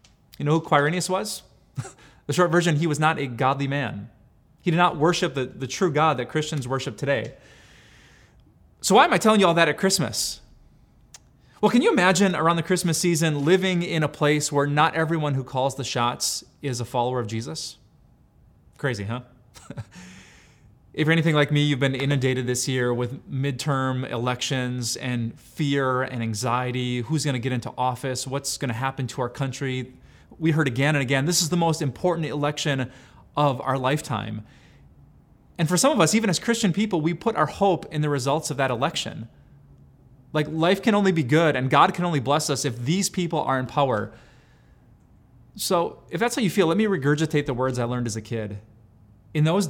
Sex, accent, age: male, American, 20-39